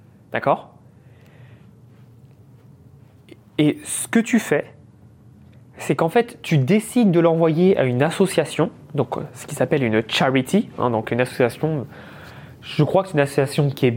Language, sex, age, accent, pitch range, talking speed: French, male, 20-39, French, 125-165 Hz, 145 wpm